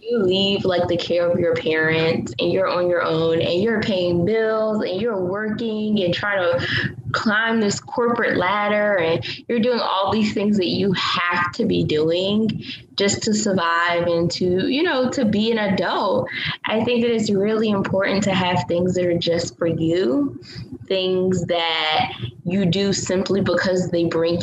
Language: English